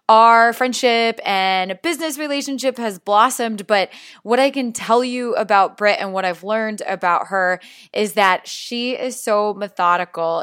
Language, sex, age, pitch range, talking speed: English, female, 20-39, 185-235 Hz, 155 wpm